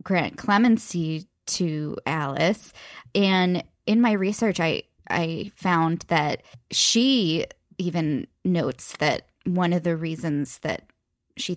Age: 10-29